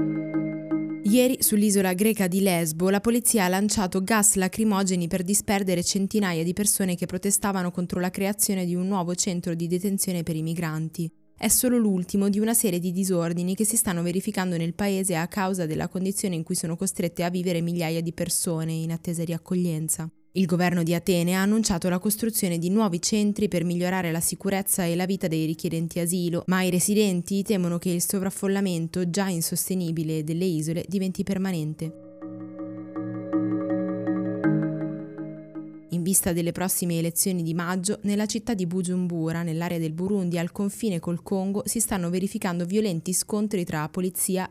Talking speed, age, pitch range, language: 160 wpm, 20-39, 165-195 Hz, Italian